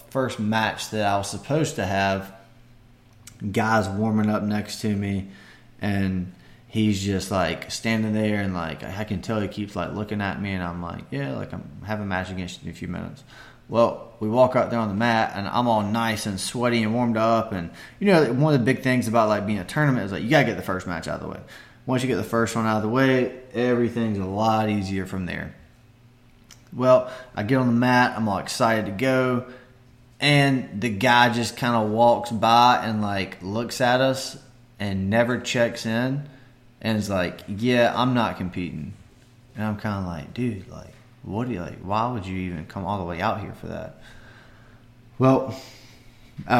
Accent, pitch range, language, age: American, 100-120 Hz, English, 20-39